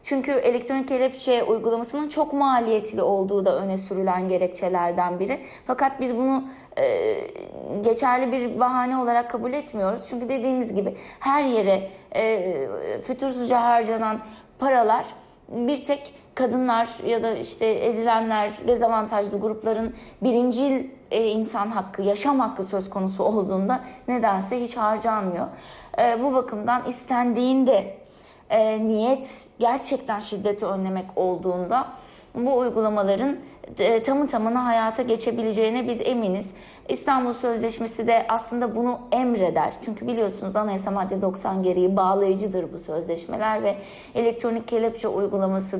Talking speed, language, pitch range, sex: 115 wpm, Turkish, 200-250 Hz, female